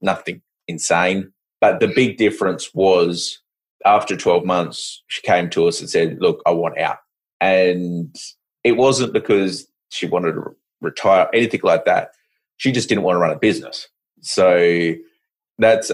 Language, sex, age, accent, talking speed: English, male, 20-39, Australian, 155 wpm